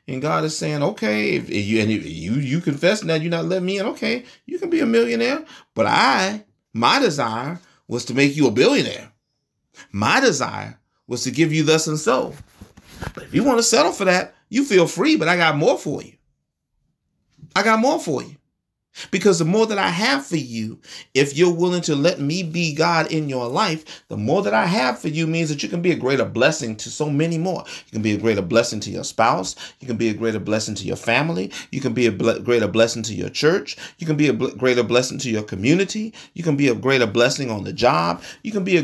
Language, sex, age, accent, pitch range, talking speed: English, male, 30-49, American, 115-165 Hz, 235 wpm